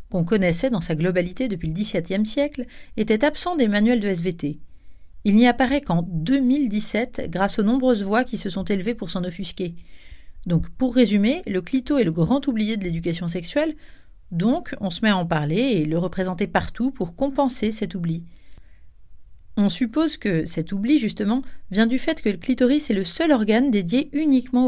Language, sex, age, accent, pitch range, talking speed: French, female, 40-59, French, 170-250 Hz, 185 wpm